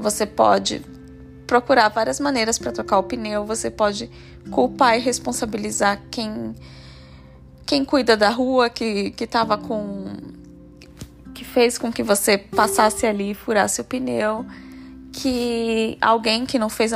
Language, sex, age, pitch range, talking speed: Portuguese, female, 10-29, 200-255 Hz, 125 wpm